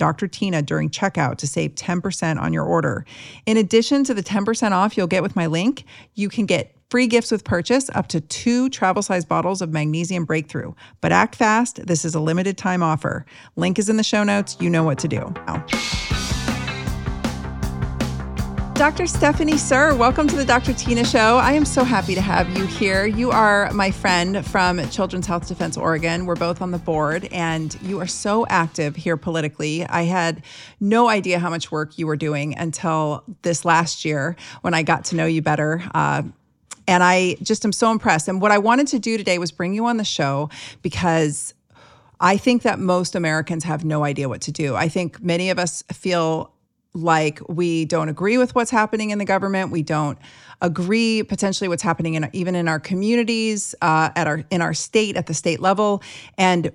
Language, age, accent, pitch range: English, 40-59, American, 160-200 Hz